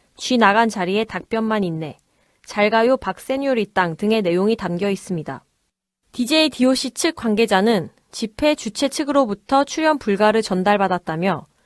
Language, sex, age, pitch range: Korean, female, 20-39, 200-260 Hz